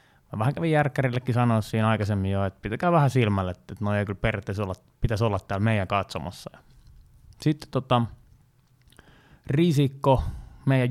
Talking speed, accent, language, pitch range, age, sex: 145 wpm, native, Finnish, 105-135 Hz, 20-39, male